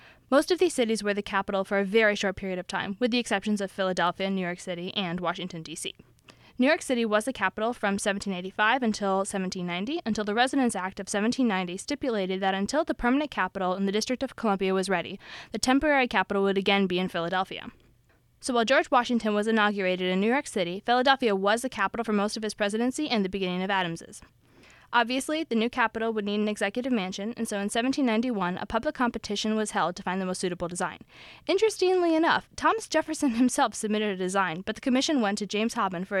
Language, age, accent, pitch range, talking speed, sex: English, 10-29, American, 190-240 Hz, 210 wpm, female